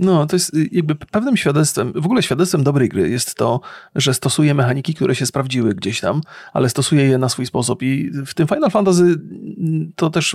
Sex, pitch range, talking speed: male, 125-150 Hz, 195 wpm